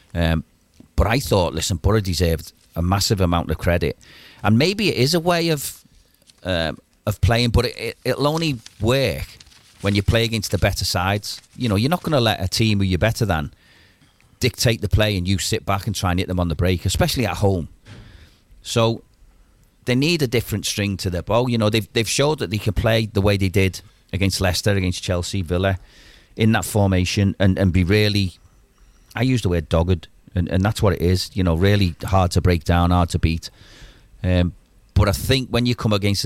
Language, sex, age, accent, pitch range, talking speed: English, male, 40-59, British, 90-110 Hz, 210 wpm